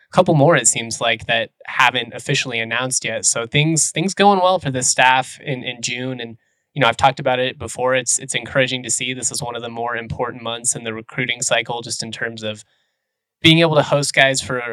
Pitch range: 115-140 Hz